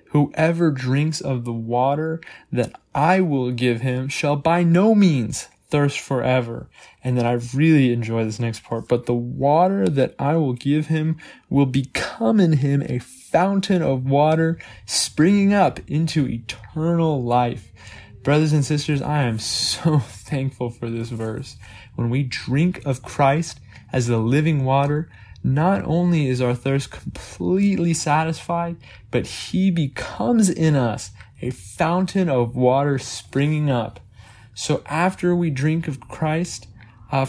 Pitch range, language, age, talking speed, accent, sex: 120-160 Hz, English, 10-29, 145 wpm, American, male